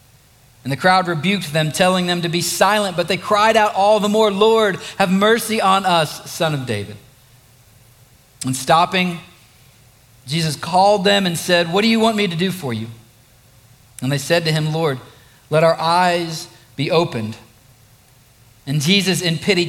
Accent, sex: American, male